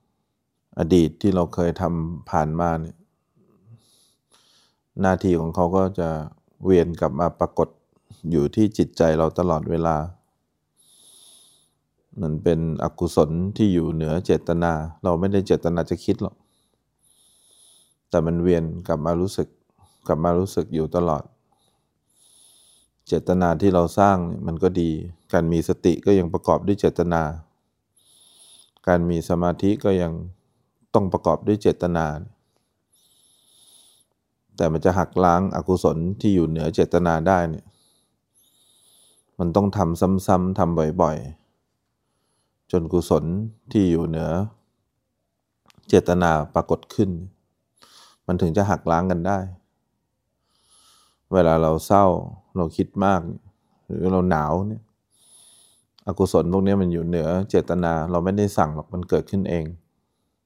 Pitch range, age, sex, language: 80-95 Hz, 20-39, male, English